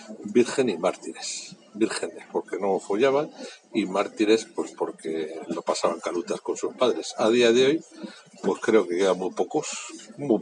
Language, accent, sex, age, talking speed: Spanish, Spanish, male, 60-79, 160 wpm